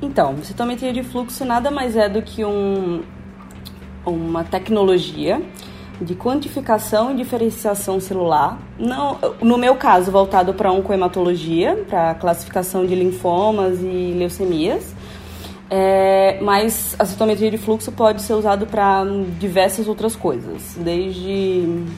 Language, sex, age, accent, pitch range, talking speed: Portuguese, female, 20-39, Brazilian, 175-220 Hz, 125 wpm